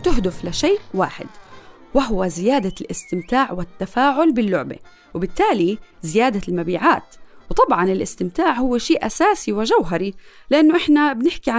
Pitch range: 185-280 Hz